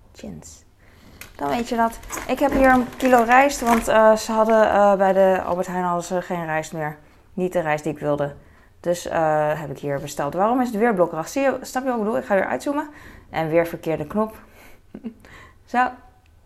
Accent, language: Dutch, Dutch